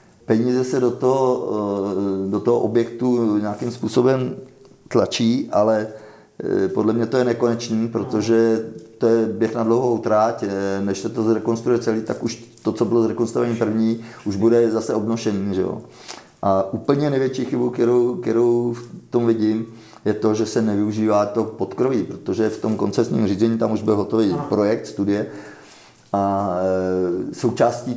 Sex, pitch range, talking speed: male, 105-120 Hz, 150 wpm